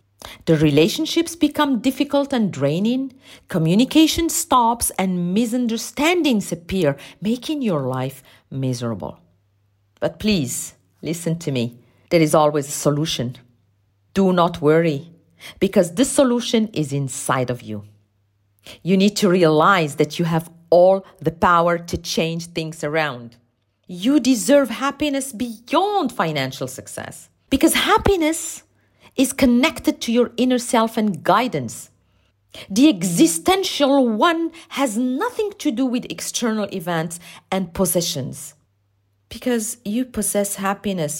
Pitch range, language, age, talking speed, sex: 150-240 Hz, English, 40-59, 120 wpm, female